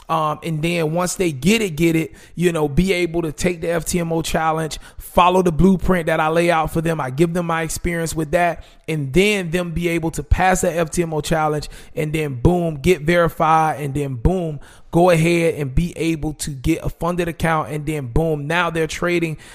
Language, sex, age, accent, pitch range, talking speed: English, male, 30-49, American, 150-175 Hz, 210 wpm